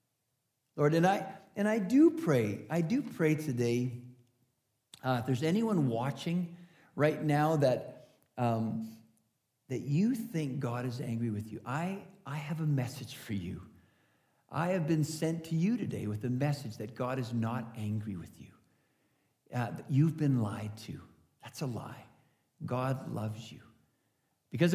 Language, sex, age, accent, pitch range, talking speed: English, male, 50-69, American, 120-175 Hz, 160 wpm